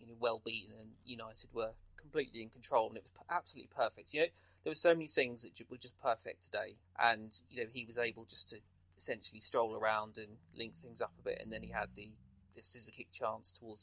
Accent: British